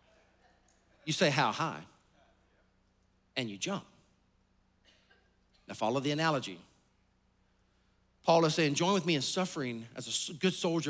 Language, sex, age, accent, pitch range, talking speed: English, male, 40-59, American, 185-285 Hz, 125 wpm